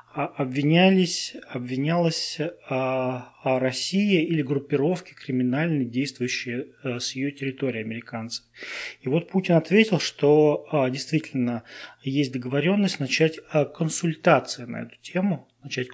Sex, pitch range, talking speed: male, 125-160 Hz, 115 wpm